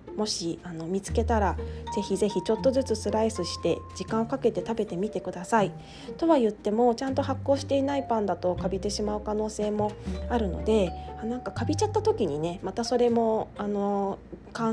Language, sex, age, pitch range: Japanese, female, 20-39, 175-235 Hz